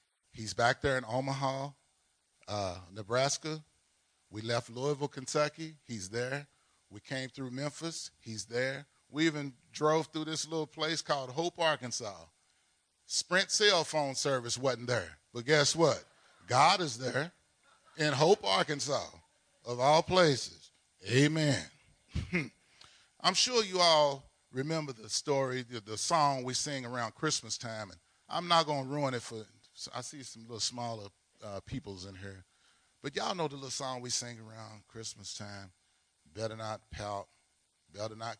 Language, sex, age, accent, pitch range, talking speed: English, male, 30-49, American, 110-155 Hz, 150 wpm